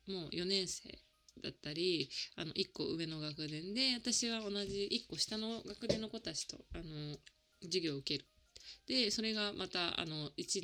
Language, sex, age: Japanese, female, 20-39